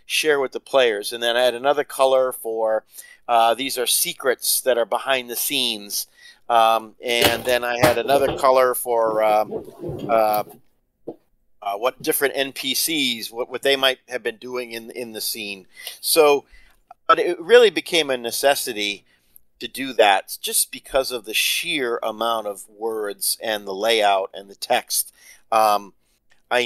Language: English